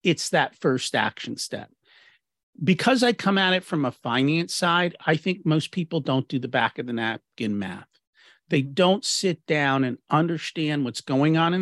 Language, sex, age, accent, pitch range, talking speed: English, male, 40-59, American, 140-195 Hz, 185 wpm